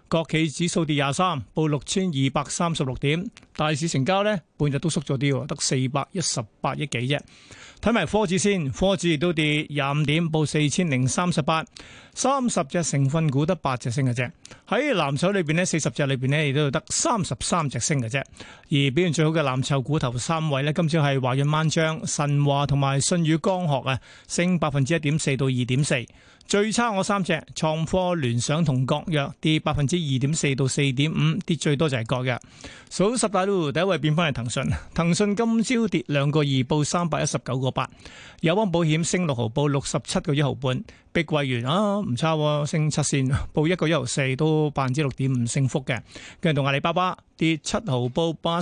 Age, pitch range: 30-49, 140-175 Hz